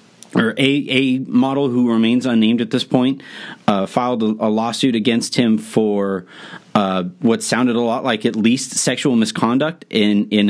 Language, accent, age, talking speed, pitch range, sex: English, American, 30-49, 175 wpm, 125-180 Hz, male